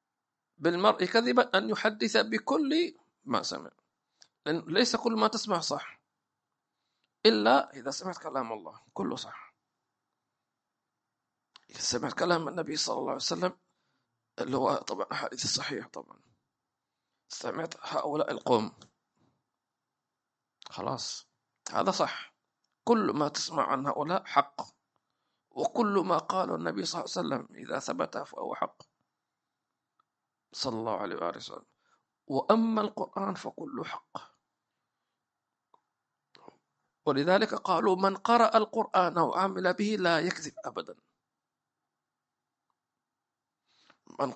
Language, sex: English, male